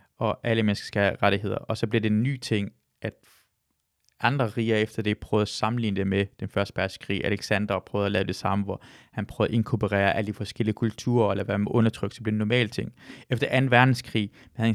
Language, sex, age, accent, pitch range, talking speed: Danish, male, 20-39, native, 105-120 Hz, 230 wpm